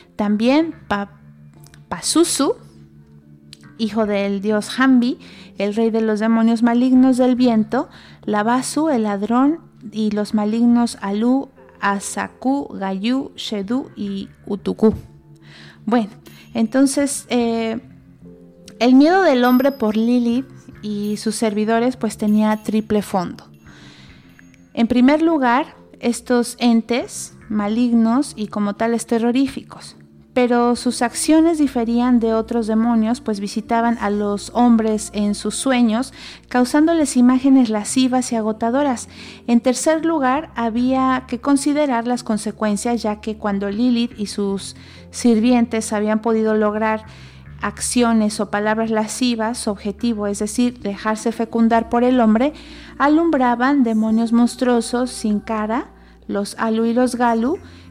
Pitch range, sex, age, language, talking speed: 210-250 Hz, female, 30-49, Spanish, 115 wpm